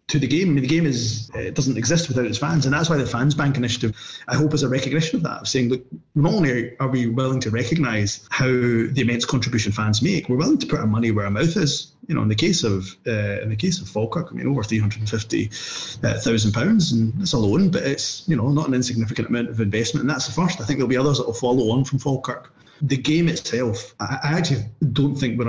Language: English